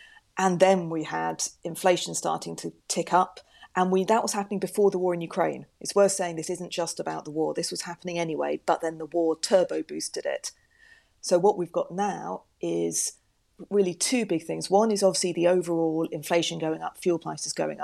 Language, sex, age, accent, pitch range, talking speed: English, female, 40-59, British, 160-185 Hz, 200 wpm